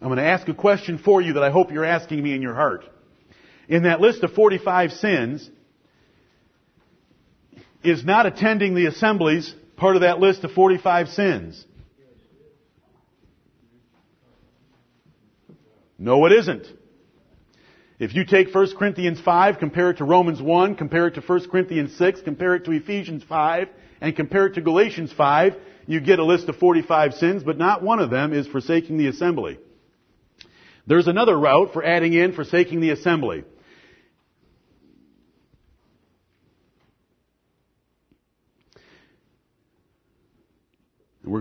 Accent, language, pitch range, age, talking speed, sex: American, English, 150-180 Hz, 50-69, 135 wpm, male